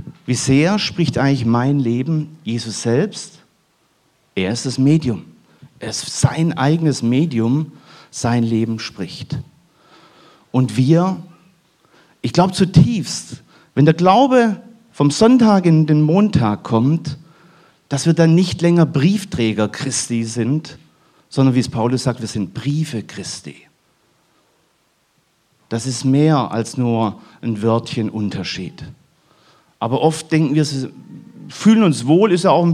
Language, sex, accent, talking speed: German, male, German, 130 wpm